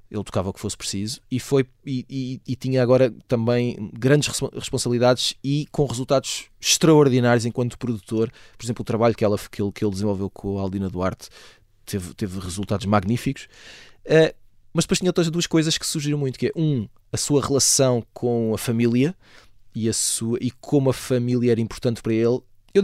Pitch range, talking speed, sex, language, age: 105-135 Hz, 190 wpm, male, Portuguese, 20-39